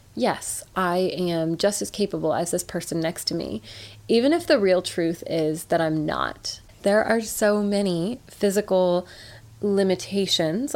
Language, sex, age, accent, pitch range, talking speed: English, female, 20-39, American, 165-200 Hz, 150 wpm